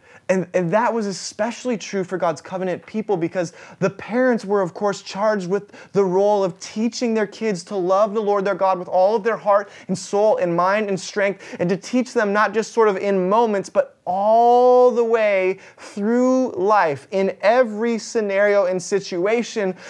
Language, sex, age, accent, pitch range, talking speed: English, male, 20-39, American, 155-205 Hz, 185 wpm